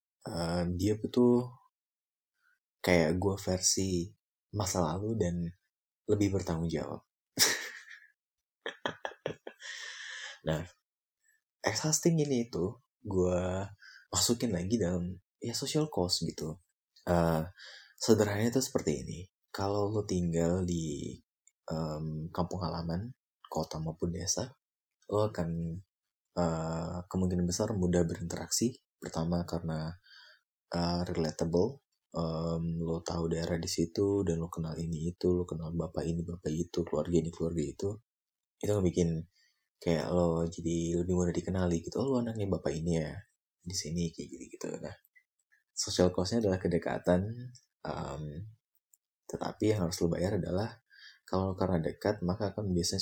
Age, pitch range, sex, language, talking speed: 20-39, 85-100 Hz, male, Indonesian, 125 wpm